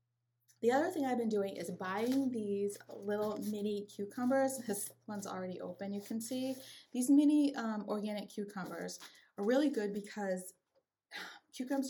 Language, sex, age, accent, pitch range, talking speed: English, female, 30-49, American, 185-230 Hz, 145 wpm